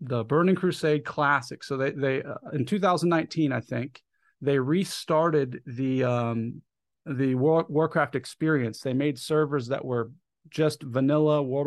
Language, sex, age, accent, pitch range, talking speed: English, male, 40-59, American, 130-155 Hz, 140 wpm